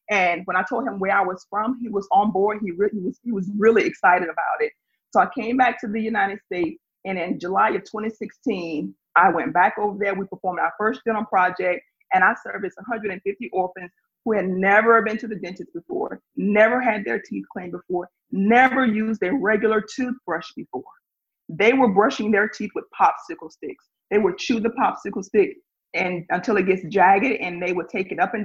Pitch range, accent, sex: 190-235 Hz, American, female